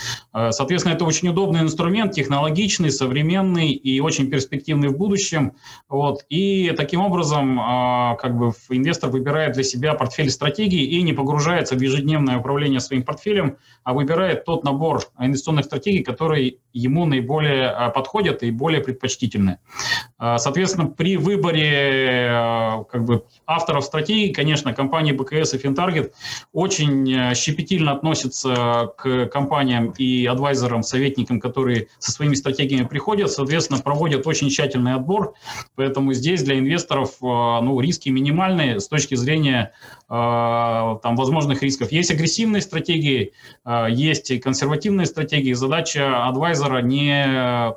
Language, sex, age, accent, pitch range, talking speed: Russian, male, 30-49, native, 125-160 Hz, 115 wpm